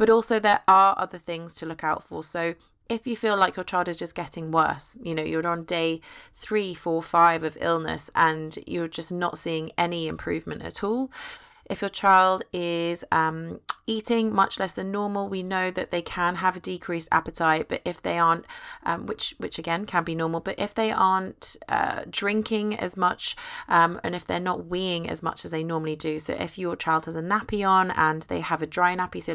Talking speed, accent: 215 wpm, British